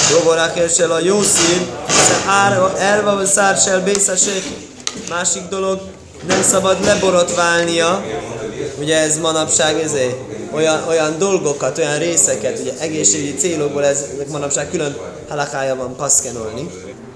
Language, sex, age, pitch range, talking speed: Hungarian, male, 20-39, 140-190 Hz, 110 wpm